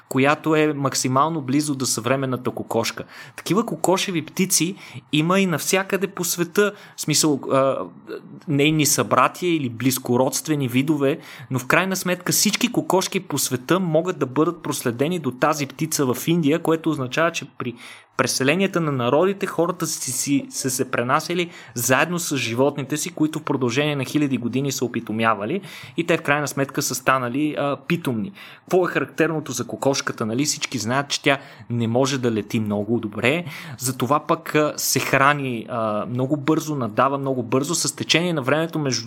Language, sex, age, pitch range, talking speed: Bulgarian, male, 20-39, 130-160 Hz, 160 wpm